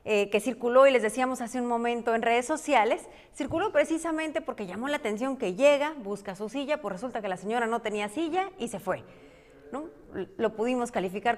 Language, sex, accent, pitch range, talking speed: Spanish, female, Mexican, 210-295 Hz, 195 wpm